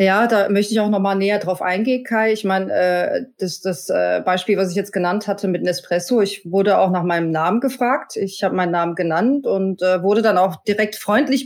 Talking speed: 215 wpm